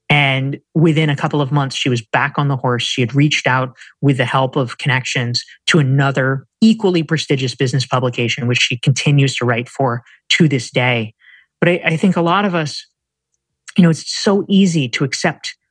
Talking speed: 195 wpm